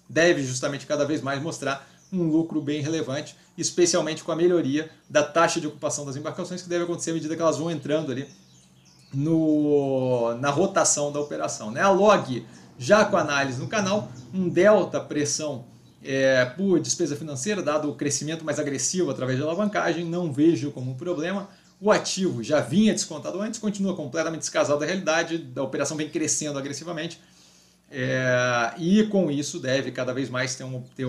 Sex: male